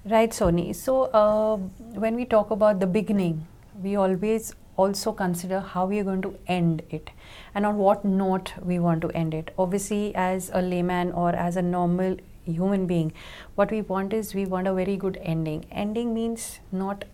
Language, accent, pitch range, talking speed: English, Indian, 175-210 Hz, 185 wpm